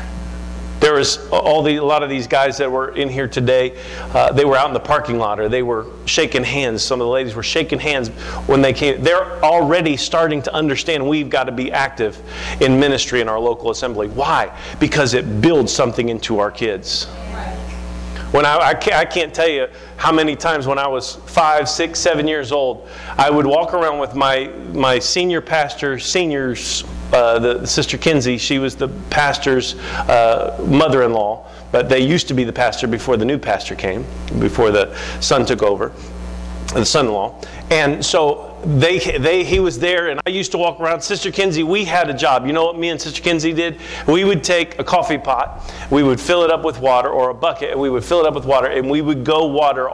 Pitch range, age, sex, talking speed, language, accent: 120-160 Hz, 40-59, male, 210 wpm, English, American